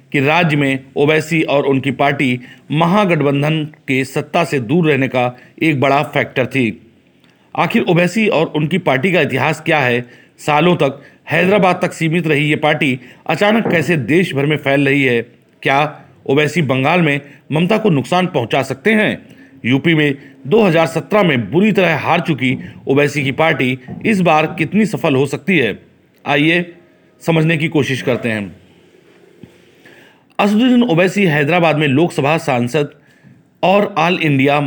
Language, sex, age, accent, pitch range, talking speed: Hindi, male, 40-59, native, 140-170 Hz, 150 wpm